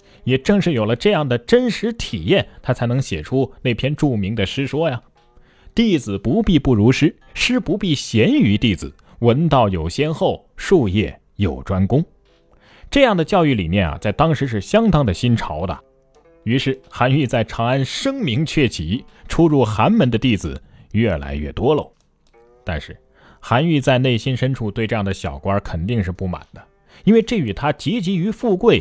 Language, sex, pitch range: Chinese, male, 100-165 Hz